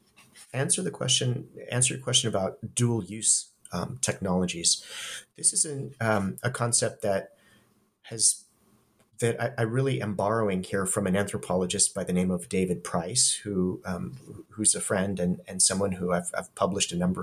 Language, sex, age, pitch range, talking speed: English, male, 30-49, 105-125 Hz, 165 wpm